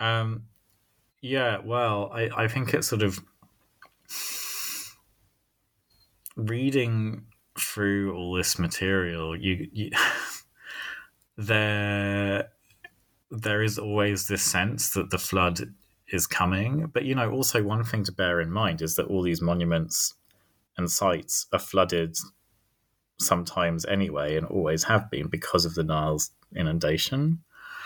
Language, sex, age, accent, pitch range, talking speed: English, male, 20-39, British, 85-105 Hz, 125 wpm